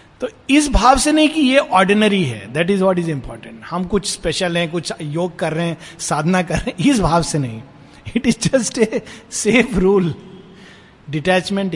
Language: Hindi